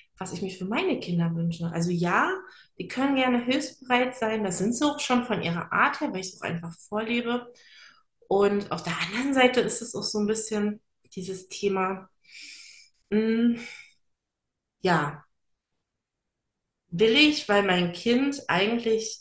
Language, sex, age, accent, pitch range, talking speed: German, female, 30-49, German, 180-235 Hz, 155 wpm